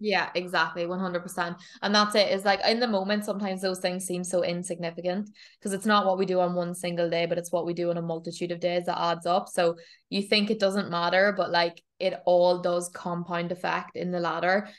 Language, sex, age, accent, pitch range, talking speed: English, female, 20-39, Irish, 175-195 Hz, 225 wpm